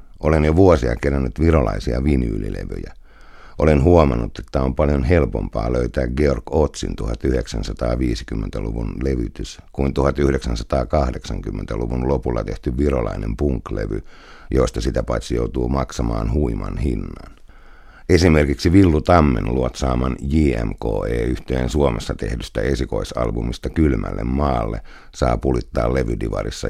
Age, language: 60-79, Finnish